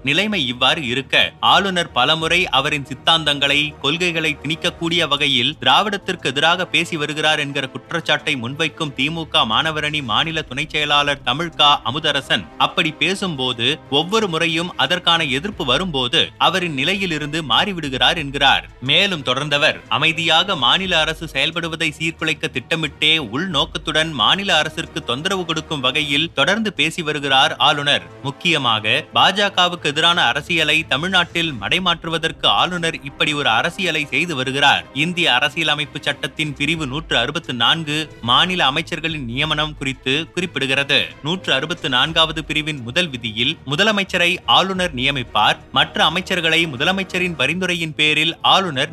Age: 30-49